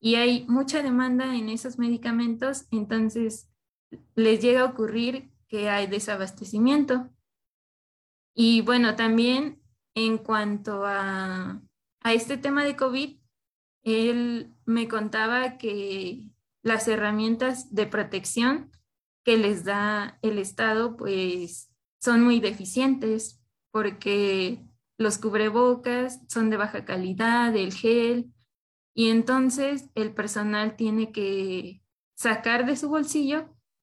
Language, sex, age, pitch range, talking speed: Spanish, female, 20-39, 210-250 Hz, 110 wpm